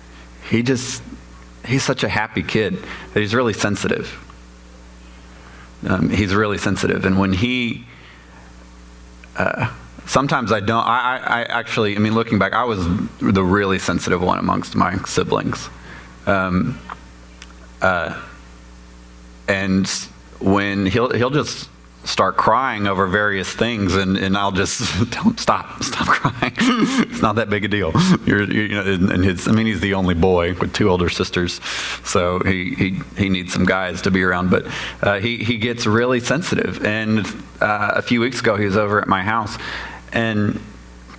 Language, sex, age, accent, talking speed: English, male, 30-49, American, 165 wpm